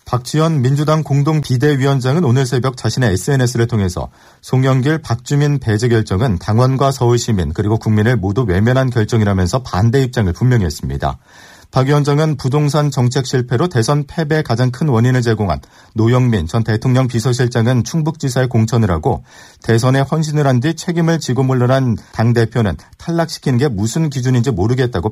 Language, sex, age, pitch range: Korean, male, 40-59, 110-140 Hz